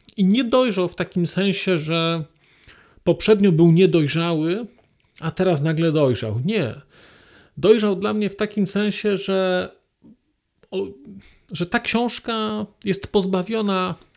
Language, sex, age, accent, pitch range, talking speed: Polish, male, 40-59, native, 160-195 Hz, 115 wpm